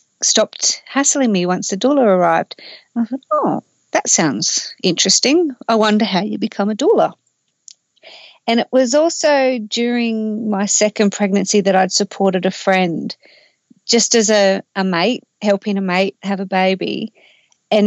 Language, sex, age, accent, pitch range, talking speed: English, female, 40-59, Australian, 195-250 Hz, 150 wpm